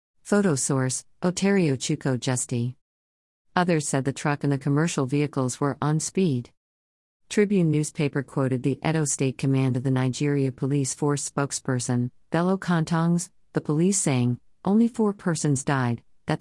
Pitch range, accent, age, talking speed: 130-155 Hz, American, 50-69, 145 wpm